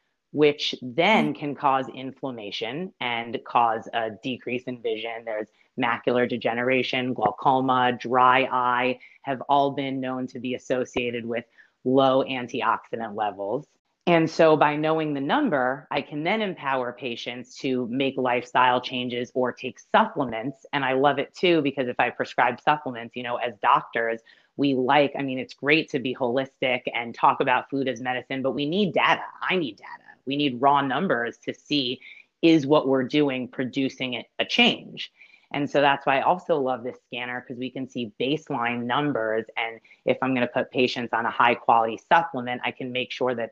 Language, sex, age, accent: English, female, 30-49, American